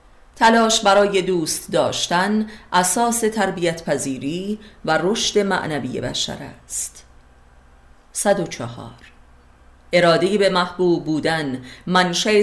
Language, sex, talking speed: Persian, female, 90 wpm